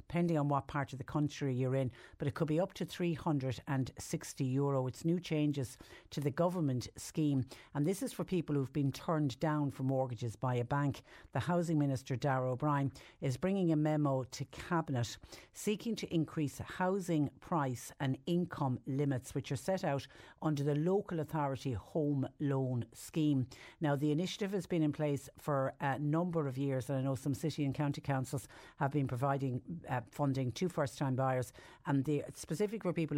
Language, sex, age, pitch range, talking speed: English, female, 50-69, 130-160 Hz, 185 wpm